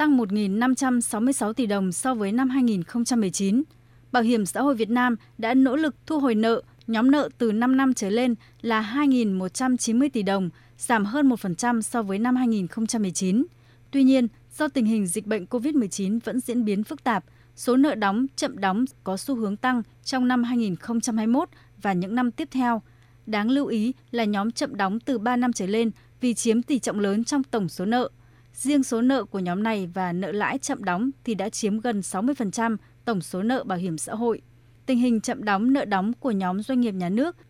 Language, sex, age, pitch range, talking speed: Vietnamese, female, 20-39, 195-250 Hz, 200 wpm